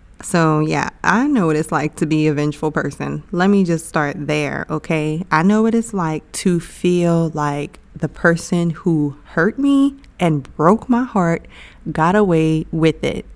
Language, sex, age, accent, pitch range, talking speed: English, female, 20-39, American, 160-205 Hz, 175 wpm